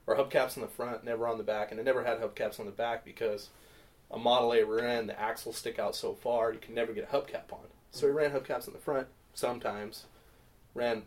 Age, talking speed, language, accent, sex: 30-49, 245 wpm, English, American, male